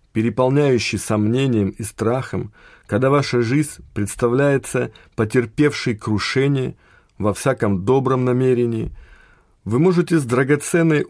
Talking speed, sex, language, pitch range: 95 wpm, male, Russian, 105-140 Hz